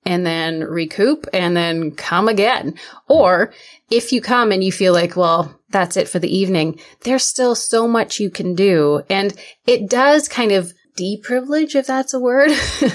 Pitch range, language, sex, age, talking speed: 165-225 Hz, English, female, 20-39, 175 wpm